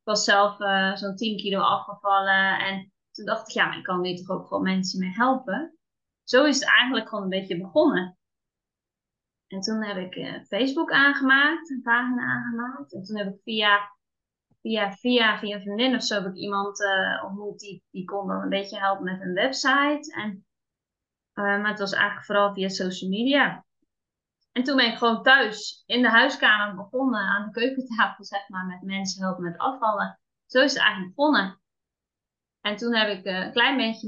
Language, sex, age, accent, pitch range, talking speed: Dutch, female, 20-39, Dutch, 195-245 Hz, 190 wpm